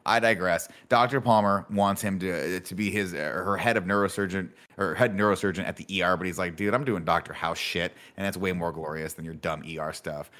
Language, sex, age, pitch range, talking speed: English, male, 30-49, 85-105 Hz, 225 wpm